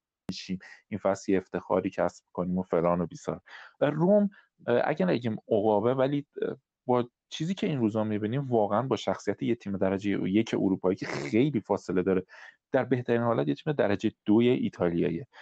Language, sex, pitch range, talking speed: Persian, male, 100-140 Hz, 155 wpm